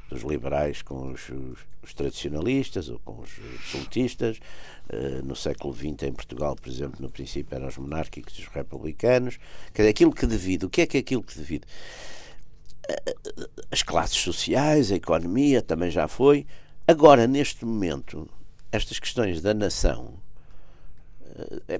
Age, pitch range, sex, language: 60-79, 75-115 Hz, male, Portuguese